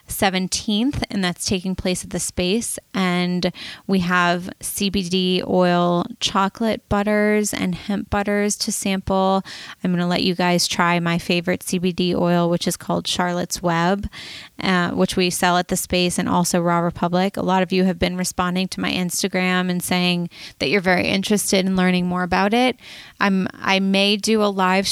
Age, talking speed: 20-39, 180 wpm